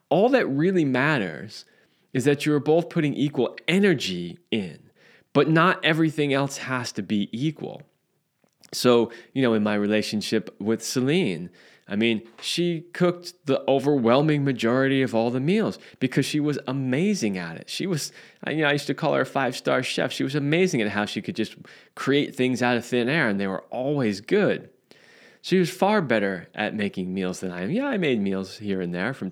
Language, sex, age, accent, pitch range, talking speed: English, male, 20-39, American, 105-150 Hz, 190 wpm